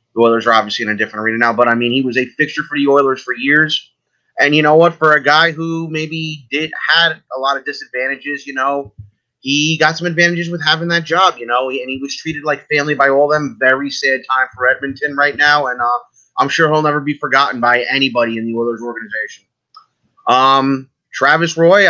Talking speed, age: 220 wpm, 30-49